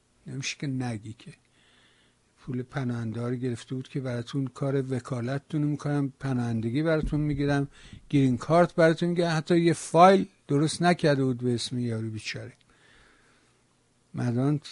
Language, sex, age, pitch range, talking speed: Persian, male, 60-79, 125-160 Hz, 125 wpm